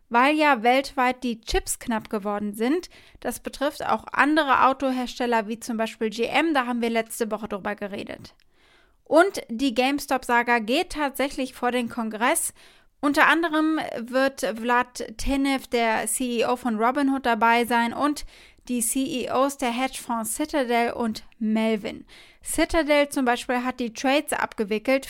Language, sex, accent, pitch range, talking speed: German, female, German, 230-280 Hz, 140 wpm